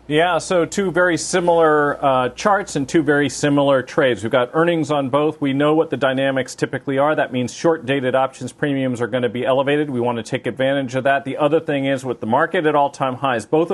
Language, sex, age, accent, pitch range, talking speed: English, male, 40-59, American, 130-160 Hz, 235 wpm